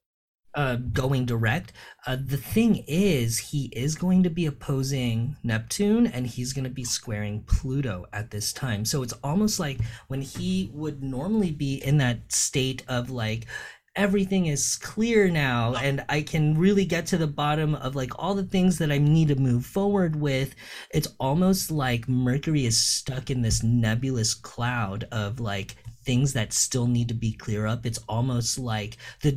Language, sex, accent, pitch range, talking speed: English, male, American, 115-145 Hz, 175 wpm